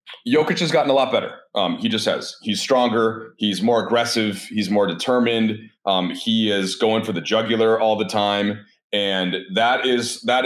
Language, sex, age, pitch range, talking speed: English, male, 30-49, 95-125 Hz, 185 wpm